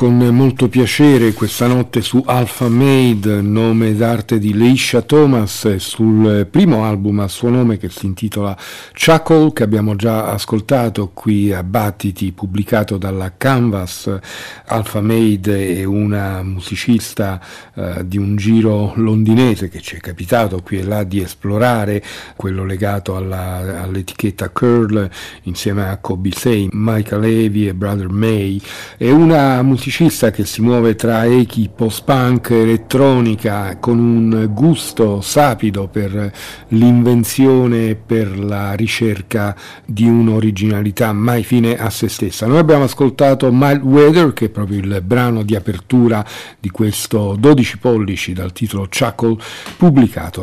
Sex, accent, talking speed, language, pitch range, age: male, native, 130 wpm, Italian, 100-125 Hz, 50-69